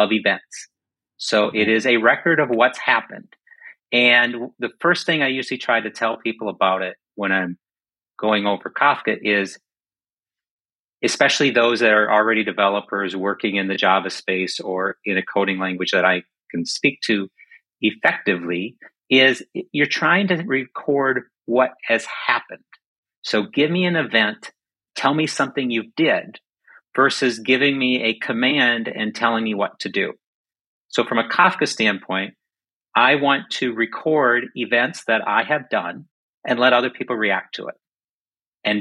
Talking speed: 155 wpm